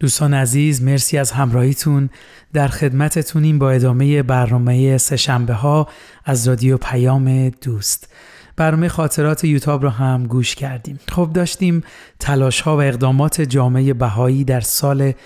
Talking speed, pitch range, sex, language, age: 130 wpm, 130-150 Hz, male, Persian, 30-49